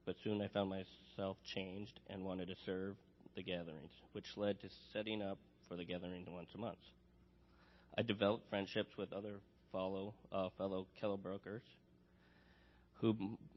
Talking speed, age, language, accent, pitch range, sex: 140 wpm, 20-39, English, American, 90-105 Hz, male